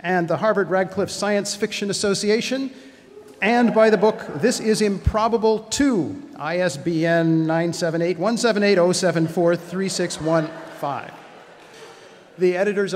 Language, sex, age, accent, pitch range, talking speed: English, male, 50-69, American, 155-215 Hz, 95 wpm